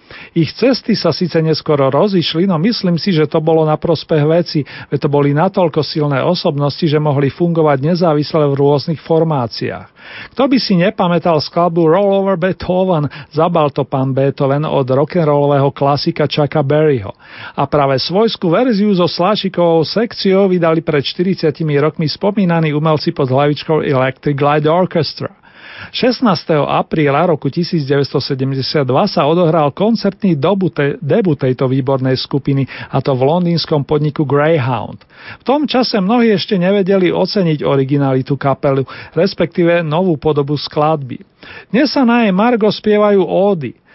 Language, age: Slovak, 40-59